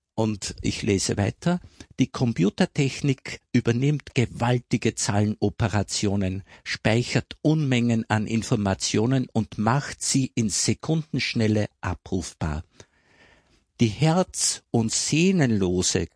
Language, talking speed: German, 85 wpm